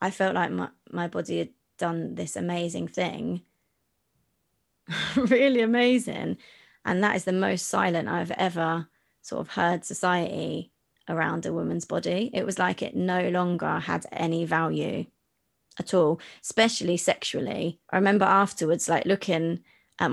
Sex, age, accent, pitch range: female, 20-39, British, 165-185 Hz